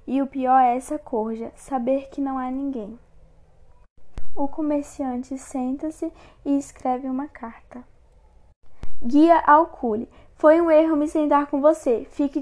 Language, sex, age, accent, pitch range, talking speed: Portuguese, female, 10-29, Brazilian, 255-300 Hz, 135 wpm